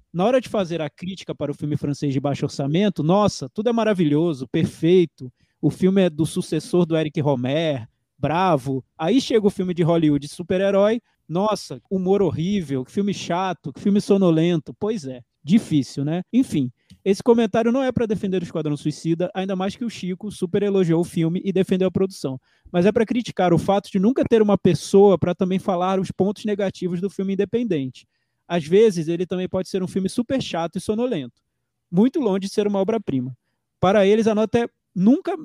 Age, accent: 20-39, Brazilian